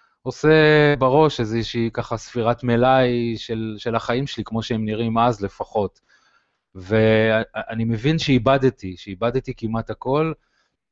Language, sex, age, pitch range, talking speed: Hebrew, male, 20-39, 105-130 Hz, 115 wpm